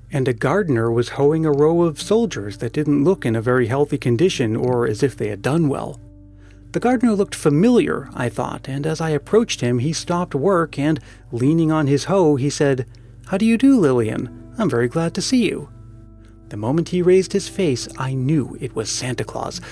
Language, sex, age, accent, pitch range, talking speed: English, male, 30-49, American, 125-170 Hz, 205 wpm